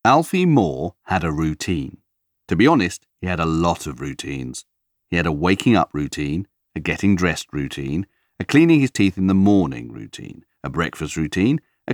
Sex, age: male, 40-59